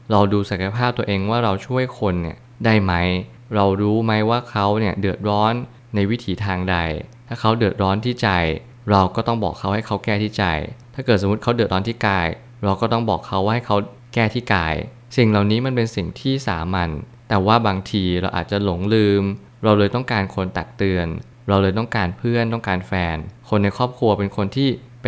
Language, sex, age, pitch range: Thai, male, 20-39, 95-115 Hz